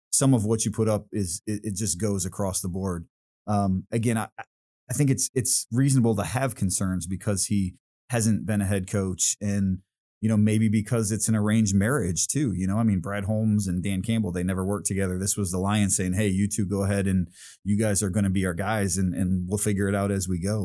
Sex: male